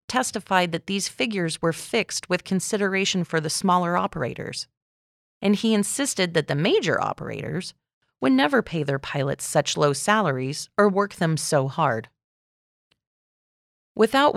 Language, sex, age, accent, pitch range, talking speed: English, female, 30-49, American, 150-210 Hz, 140 wpm